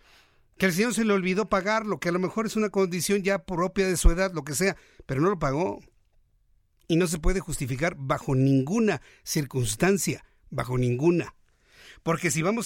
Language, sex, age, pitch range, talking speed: Spanish, male, 50-69, 140-190 Hz, 190 wpm